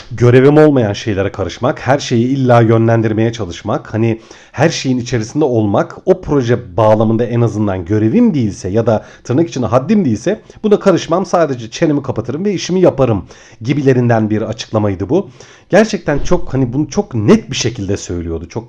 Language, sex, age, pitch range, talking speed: Turkish, male, 40-59, 110-160 Hz, 155 wpm